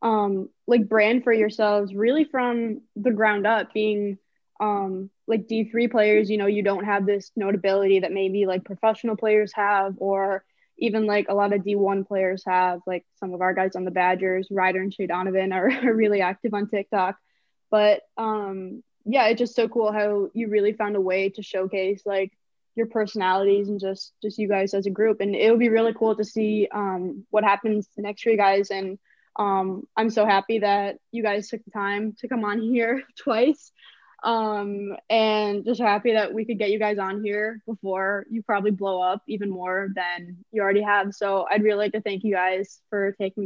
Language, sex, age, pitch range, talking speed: English, female, 10-29, 195-220 Hz, 195 wpm